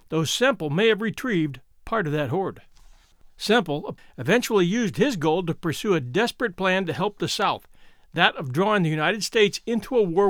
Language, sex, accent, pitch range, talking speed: English, male, American, 165-215 Hz, 185 wpm